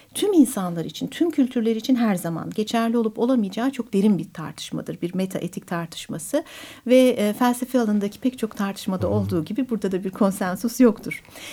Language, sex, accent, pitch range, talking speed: Turkish, female, native, 180-250 Hz, 165 wpm